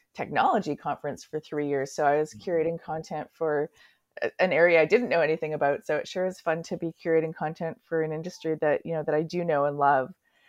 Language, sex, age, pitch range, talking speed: English, female, 30-49, 155-175 Hz, 225 wpm